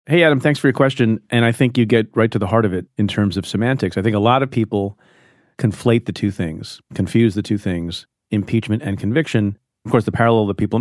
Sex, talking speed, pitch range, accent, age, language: male, 245 wpm, 95-115 Hz, American, 40-59, English